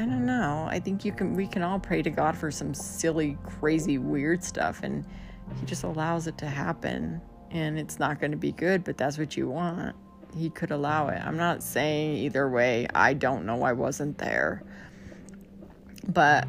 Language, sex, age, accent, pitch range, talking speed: English, female, 30-49, American, 140-180 Hz, 195 wpm